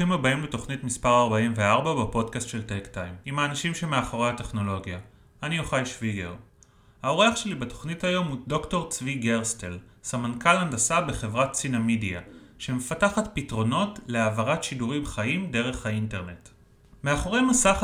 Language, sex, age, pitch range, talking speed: Hebrew, male, 30-49, 110-165 Hz, 120 wpm